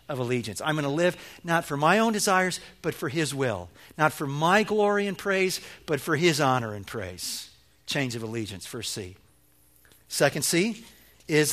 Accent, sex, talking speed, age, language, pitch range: American, male, 170 wpm, 50-69, English, 110-170 Hz